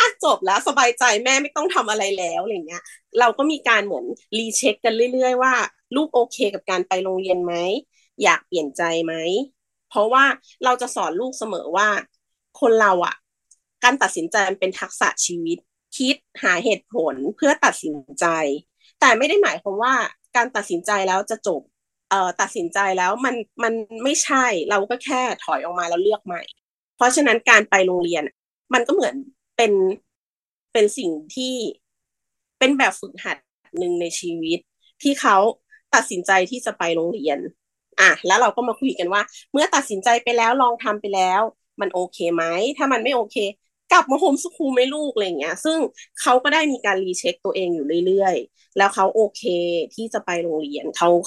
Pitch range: 185-265 Hz